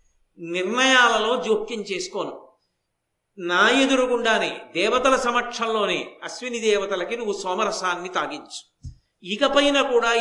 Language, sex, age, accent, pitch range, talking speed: Telugu, male, 50-69, native, 200-255 Hz, 80 wpm